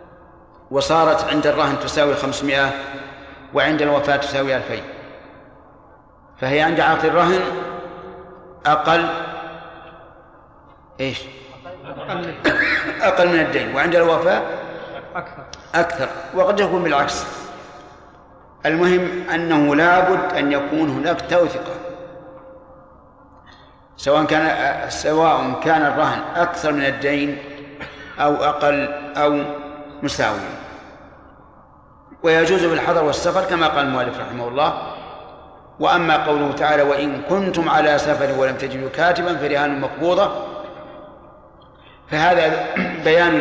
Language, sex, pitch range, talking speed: Arabic, male, 145-175 Hz, 90 wpm